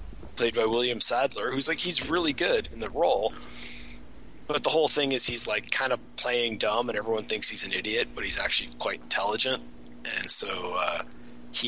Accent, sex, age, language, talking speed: American, male, 30-49, English, 195 wpm